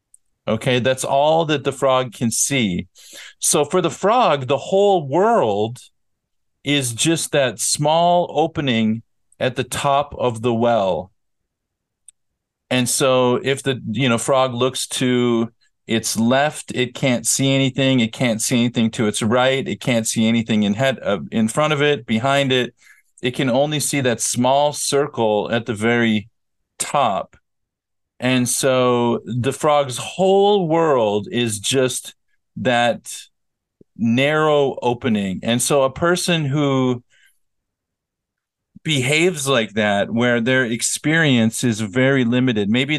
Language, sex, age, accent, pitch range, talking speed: English, male, 50-69, American, 115-135 Hz, 135 wpm